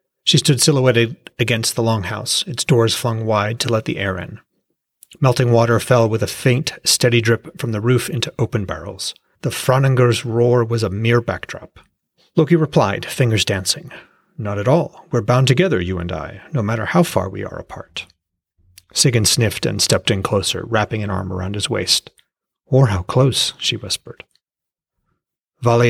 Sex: male